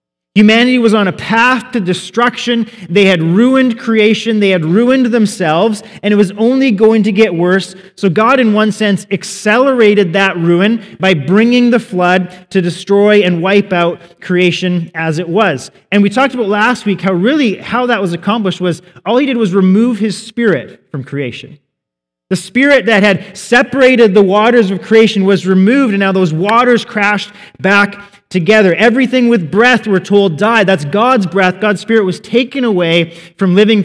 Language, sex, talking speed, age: English, male, 175 wpm, 30-49